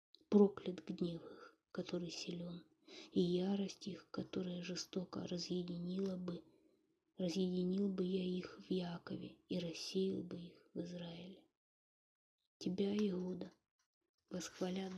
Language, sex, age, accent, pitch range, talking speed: Russian, female, 20-39, native, 175-195 Hz, 105 wpm